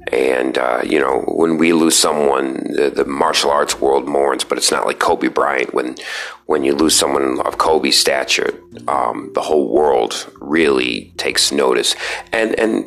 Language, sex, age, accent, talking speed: English, male, 30-49, American, 175 wpm